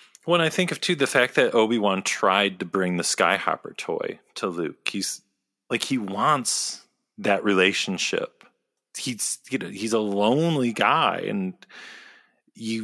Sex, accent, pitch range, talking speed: male, American, 95-125 Hz, 150 wpm